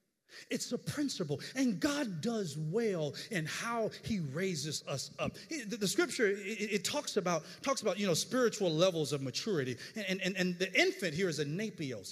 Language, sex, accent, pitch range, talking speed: English, male, American, 150-210 Hz, 180 wpm